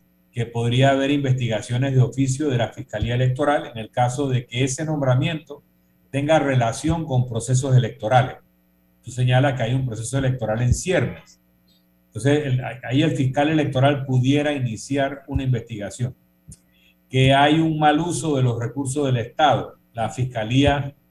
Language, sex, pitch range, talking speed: Spanish, male, 115-145 Hz, 150 wpm